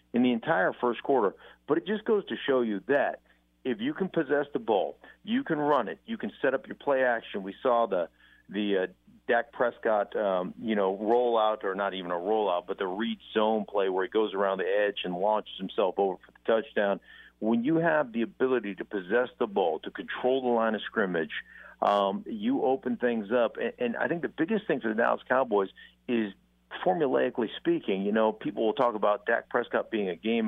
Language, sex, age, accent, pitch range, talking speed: English, male, 50-69, American, 105-130 Hz, 215 wpm